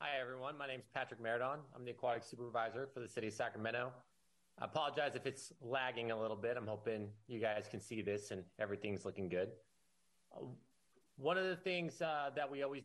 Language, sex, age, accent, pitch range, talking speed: English, male, 30-49, American, 115-140 Hz, 200 wpm